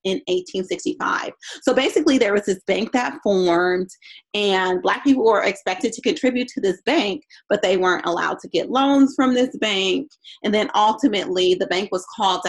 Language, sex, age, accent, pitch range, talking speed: English, female, 30-49, American, 185-255 Hz, 180 wpm